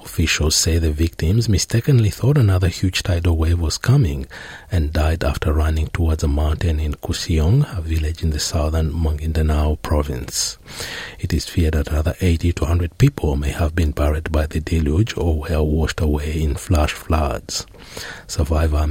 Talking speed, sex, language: 165 wpm, male, English